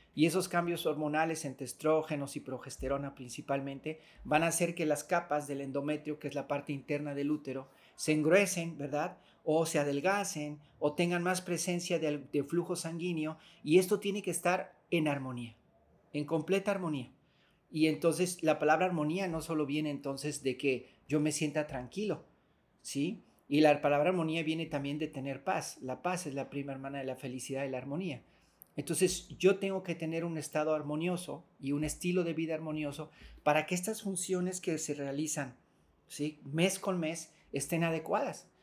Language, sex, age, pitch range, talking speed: Spanish, male, 40-59, 145-170 Hz, 175 wpm